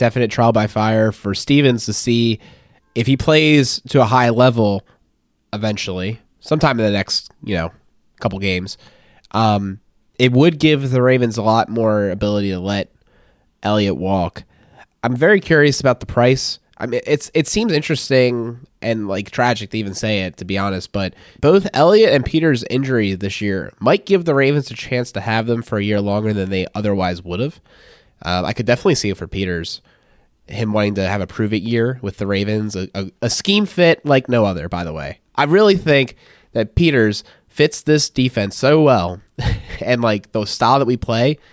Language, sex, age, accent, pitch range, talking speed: English, male, 20-39, American, 100-135 Hz, 190 wpm